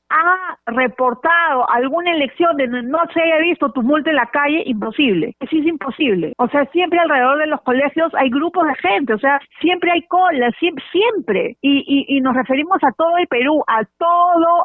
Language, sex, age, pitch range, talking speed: Spanish, female, 40-59, 240-310 Hz, 185 wpm